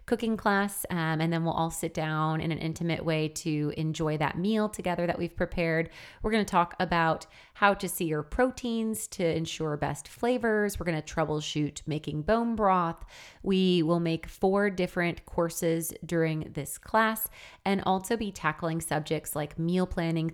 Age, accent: 30-49, American